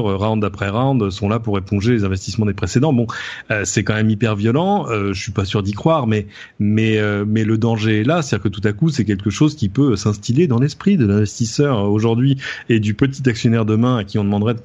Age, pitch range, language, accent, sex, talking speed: 30-49, 105-130 Hz, French, French, male, 250 wpm